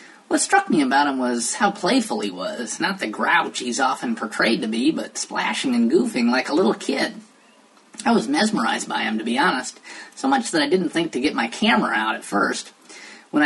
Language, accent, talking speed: English, American, 215 wpm